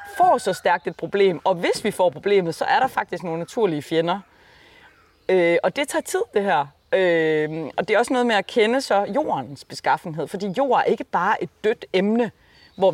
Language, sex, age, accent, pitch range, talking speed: Danish, female, 30-49, native, 180-255 Hz, 210 wpm